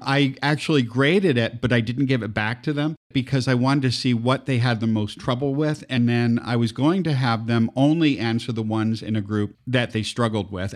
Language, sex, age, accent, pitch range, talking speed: English, male, 50-69, American, 110-135 Hz, 240 wpm